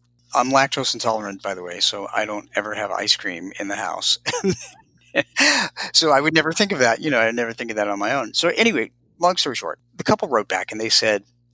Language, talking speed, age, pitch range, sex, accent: English, 235 wpm, 50-69, 115-130 Hz, male, American